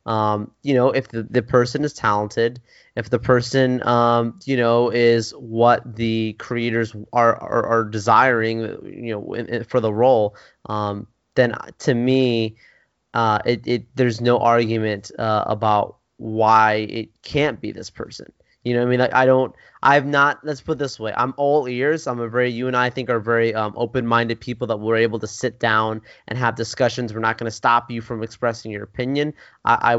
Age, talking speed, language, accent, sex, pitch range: 20-39, 200 wpm, English, American, male, 115-130 Hz